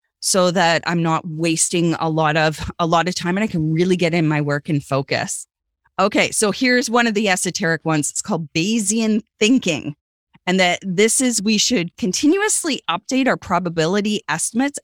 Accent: American